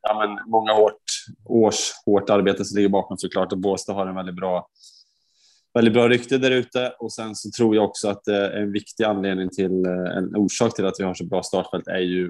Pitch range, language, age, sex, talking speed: 90-105 Hz, Swedish, 20-39, male, 215 wpm